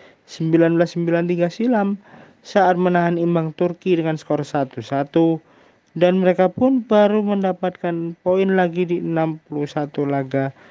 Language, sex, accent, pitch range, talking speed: Indonesian, male, native, 140-185 Hz, 100 wpm